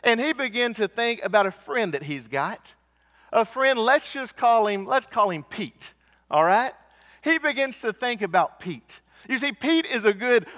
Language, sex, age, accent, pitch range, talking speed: English, male, 40-59, American, 210-280 Hz, 200 wpm